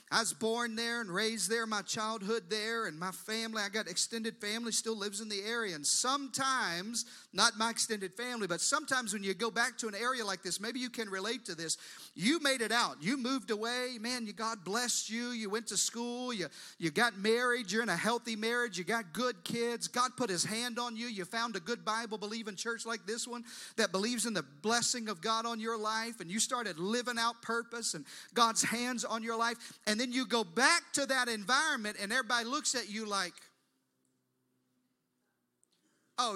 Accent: American